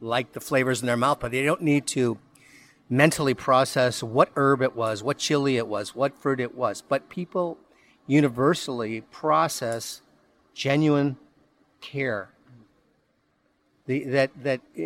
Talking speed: 135 wpm